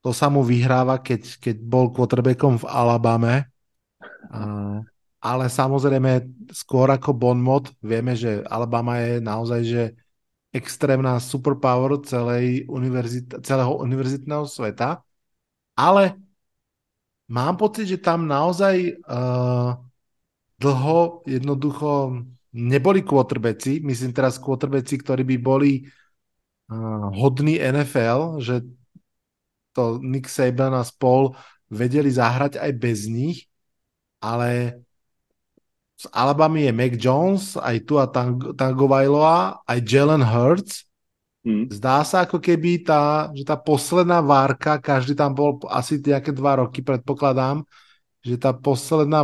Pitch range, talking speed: 125-145 Hz, 110 wpm